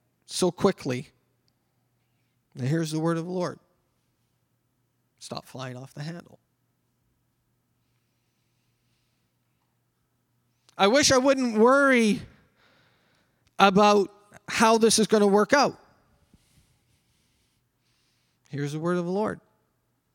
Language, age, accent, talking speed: English, 40-59, American, 100 wpm